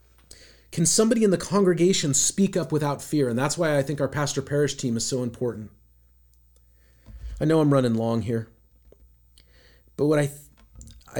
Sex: male